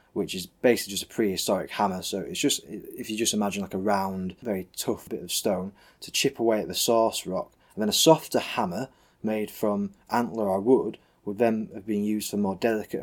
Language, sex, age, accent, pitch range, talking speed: English, male, 20-39, British, 95-110 Hz, 215 wpm